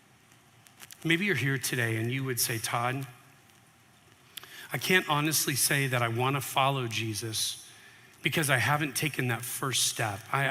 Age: 40-59